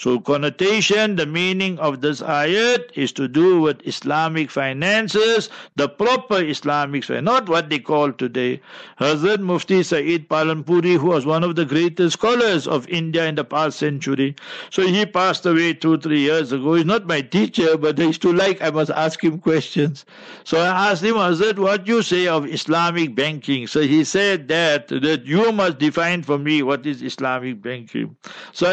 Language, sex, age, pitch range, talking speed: English, male, 60-79, 145-180 Hz, 180 wpm